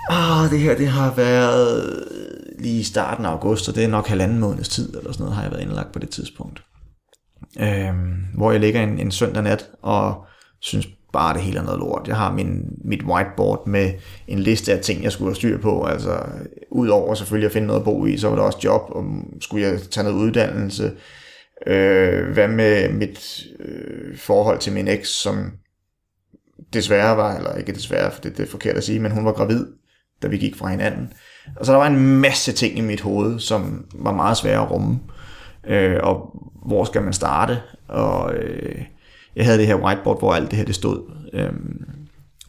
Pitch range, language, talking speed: 95-120 Hz, Danish, 205 wpm